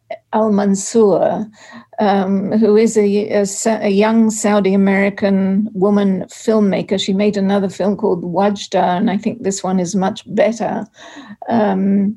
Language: English